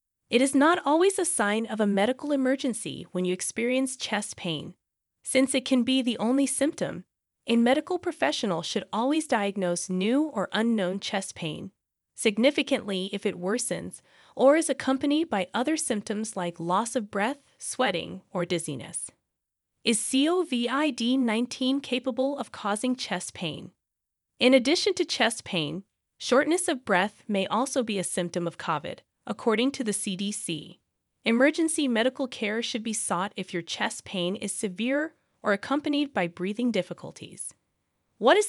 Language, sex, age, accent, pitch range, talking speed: English, female, 30-49, American, 195-270 Hz, 150 wpm